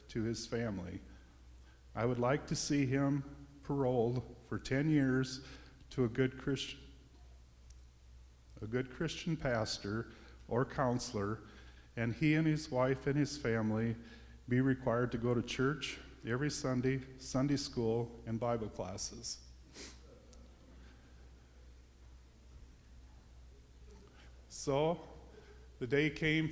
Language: English